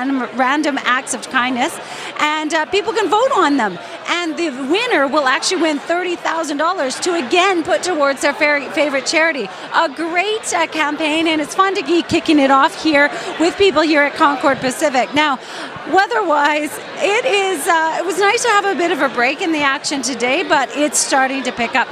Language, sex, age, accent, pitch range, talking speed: English, female, 40-59, American, 260-330 Hz, 185 wpm